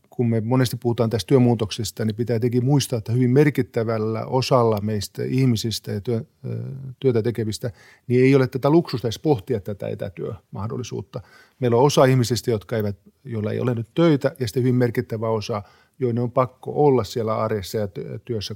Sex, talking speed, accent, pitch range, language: male, 170 wpm, native, 110-130 Hz, Finnish